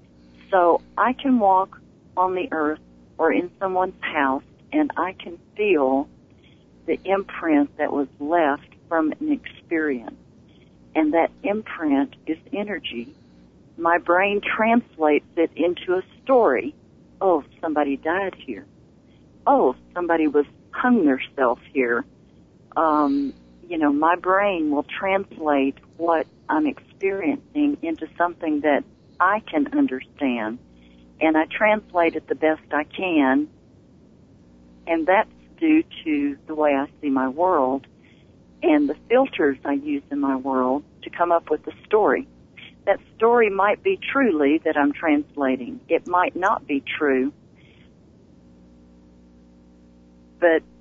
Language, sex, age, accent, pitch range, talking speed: English, female, 50-69, American, 140-210 Hz, 130 wpm